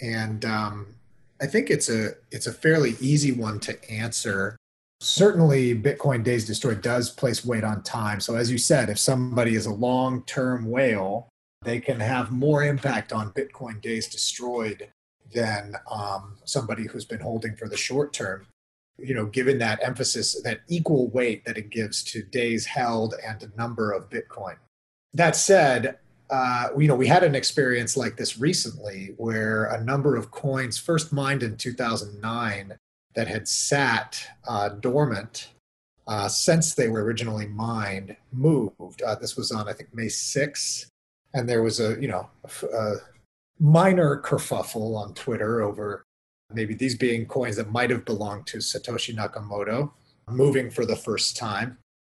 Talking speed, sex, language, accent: 160 wpm, male, English, American